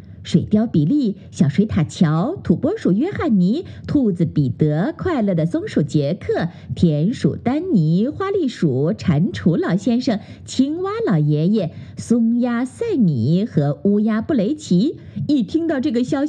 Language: Chinese